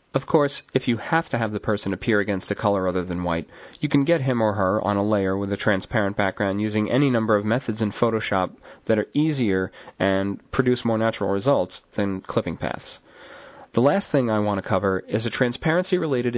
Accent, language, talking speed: American, English, 210 wpm